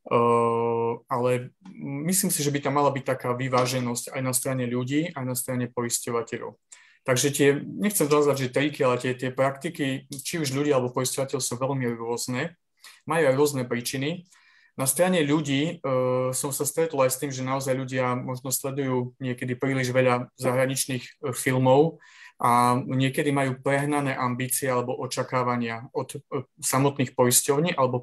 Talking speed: 155 wpm